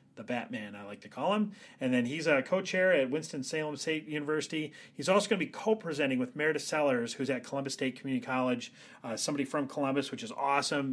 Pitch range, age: 130-155 Hz, 30-49